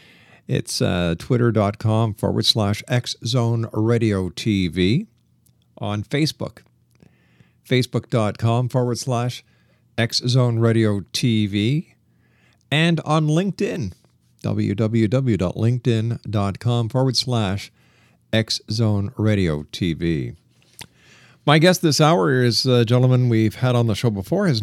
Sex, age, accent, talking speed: male, 50-69, American, 95 wpm